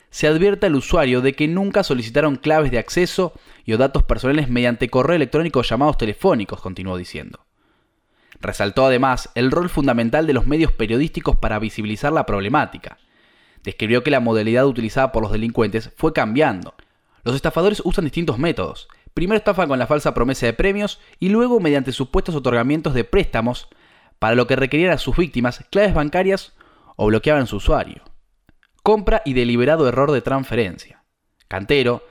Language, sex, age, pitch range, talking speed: Spanish, male, 10-29, 120-165 Hz, 160 wpm